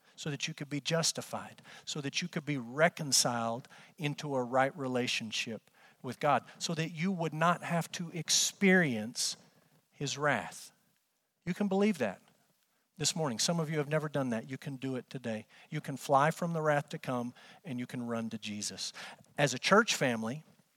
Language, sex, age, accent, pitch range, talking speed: English, male, 50-69, American, 145-195 Hz, 185 wpm